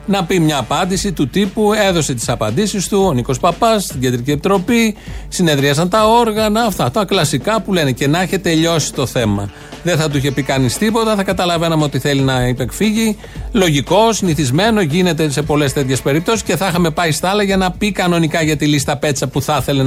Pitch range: 135-190 Hz